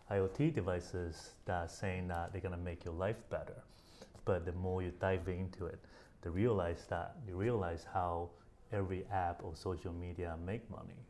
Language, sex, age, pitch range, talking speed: English, male, 30-49, 85-95 Hz, 170 wpm